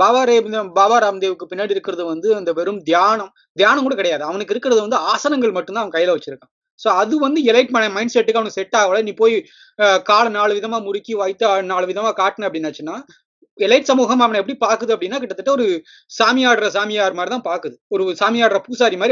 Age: 20-39